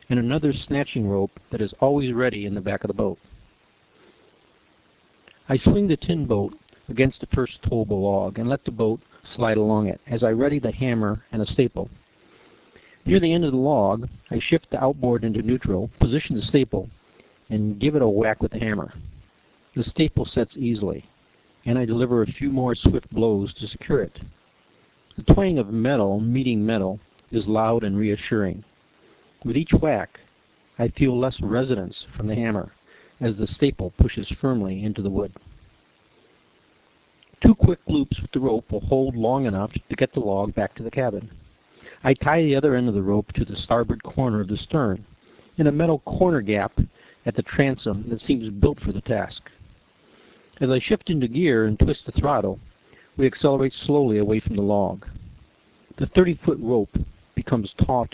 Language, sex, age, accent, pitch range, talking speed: English, male, 60-79, American, 105-130 Hz, 180 wpm